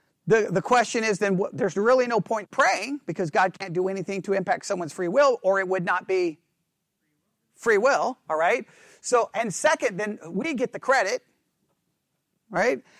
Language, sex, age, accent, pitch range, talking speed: English, male, 40-59, American, 195-270 Hz, 180 wpm